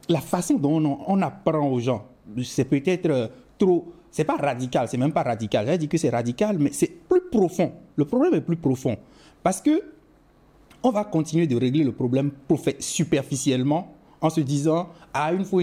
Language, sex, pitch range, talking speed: French, male, 135-190 Hz, 190 wpm